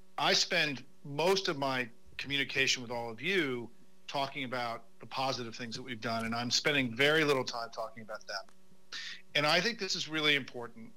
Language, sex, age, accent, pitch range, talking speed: English, male, 50-69, American, 125-170 Hz, 185 wpm